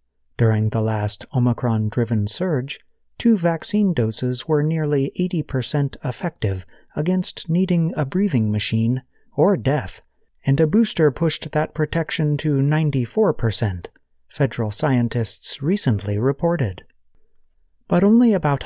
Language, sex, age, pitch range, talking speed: English, male, 30-49, 115-160 Hz, 110 wpm